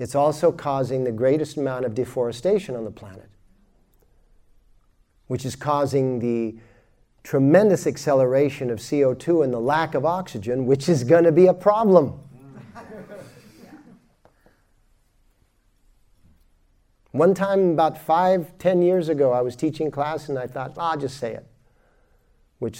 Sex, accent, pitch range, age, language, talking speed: male, American, 125-165 Hz, 50-69, English, 130 wpm